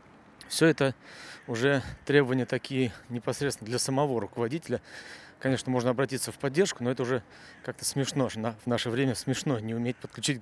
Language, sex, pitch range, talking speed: Russian, male, 115-135 Hz, 150 wpm